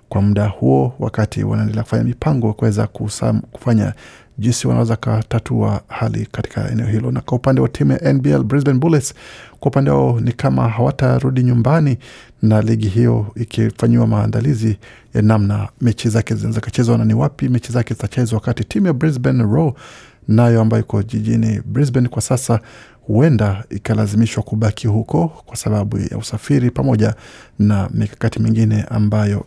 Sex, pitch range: male, 110-125 Hz